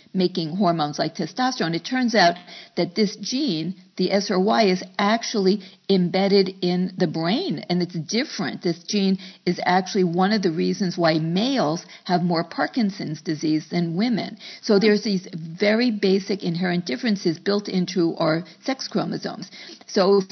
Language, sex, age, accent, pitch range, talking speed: English, female, 50-69, American, 175-220 Hz, 150 wpm